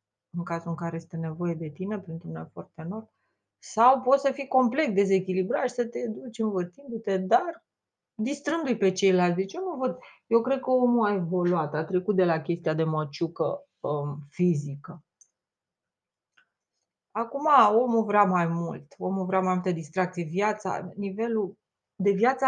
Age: 30-49